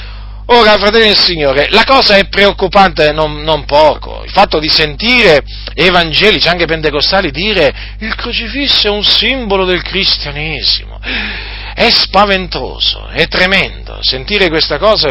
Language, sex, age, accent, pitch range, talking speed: Italian, male, 40-59, native, 150-245 Hz, 130 wpm